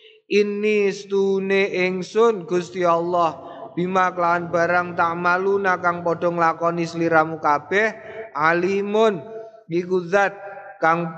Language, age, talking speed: Indonesian, 20-39, 90 wpm